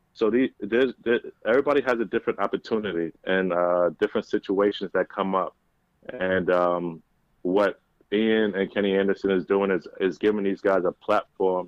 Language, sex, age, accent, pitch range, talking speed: English, male, 20-39, American, 95-110 Hz, 165 wpm